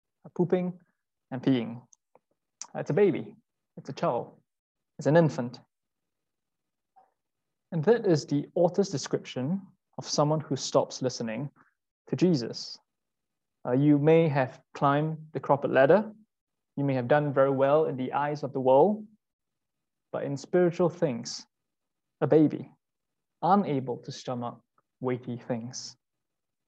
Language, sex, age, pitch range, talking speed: English, male, 20-39, 140-180 Hz, 125 wpm